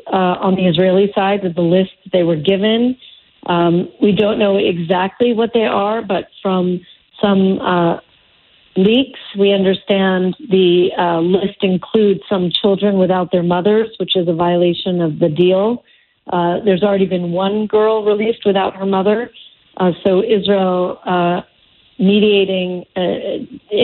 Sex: female